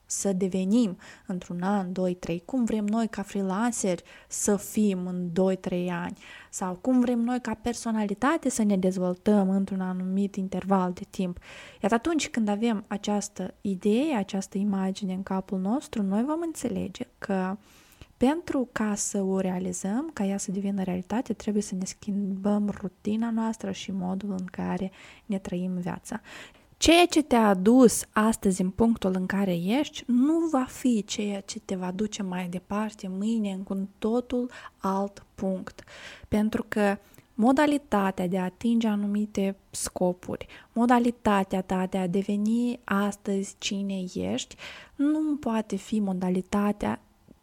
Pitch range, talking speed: 190-230 Hz, 145 wpm